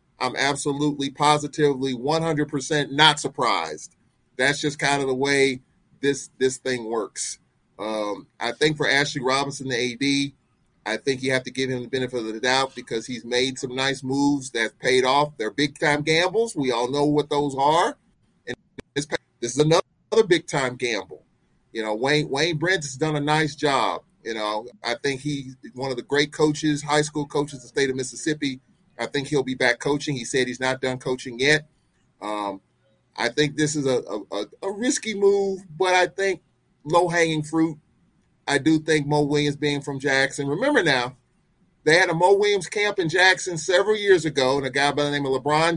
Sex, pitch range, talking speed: male, 130-155 Hz, 190 wpm